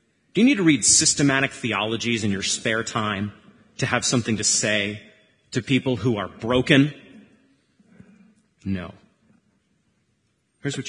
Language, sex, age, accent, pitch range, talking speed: English, male, 30-49, American, 105-135 Hz, 130 wpm